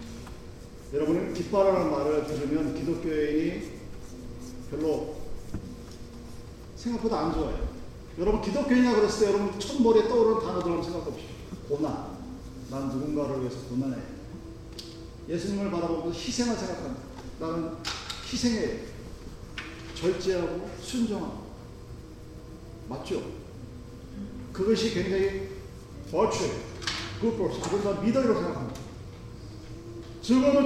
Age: 40-59